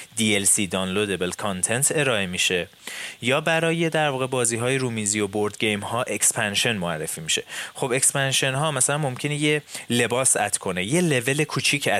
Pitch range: 105-150 Hz